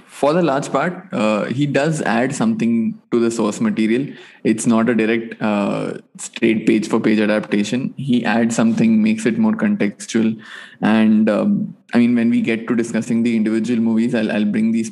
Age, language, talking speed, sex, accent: 20-39, English, 180 wpm, male, Indian